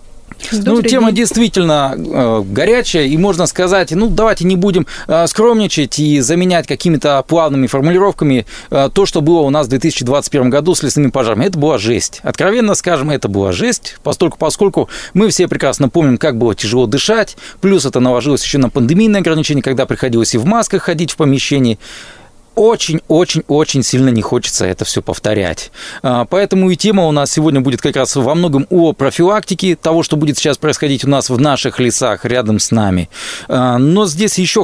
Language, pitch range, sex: Russian, 130-175 Hz, male